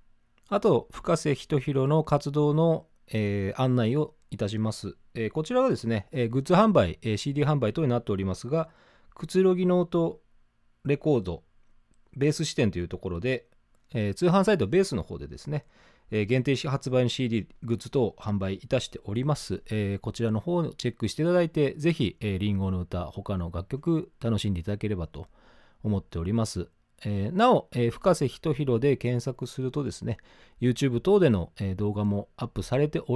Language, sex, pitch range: Japanese, male, 100-145 Hz